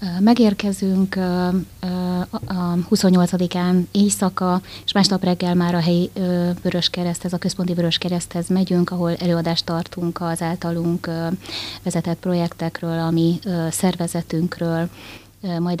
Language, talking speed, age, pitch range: Hungarian, 100 wpm, 20-39, 165-180 Hz